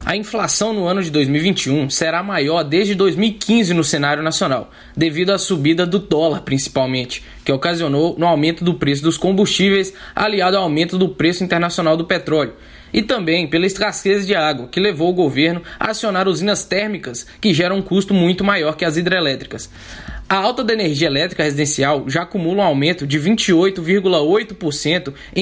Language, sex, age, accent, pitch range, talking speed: Portuguese, male, 10-29, Brazilian, 155-200 Hz, 170 wpm